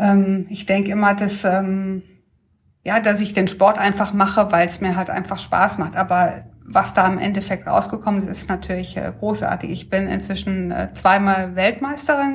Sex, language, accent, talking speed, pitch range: female, German, German, 160 wpm, 190-220 Hz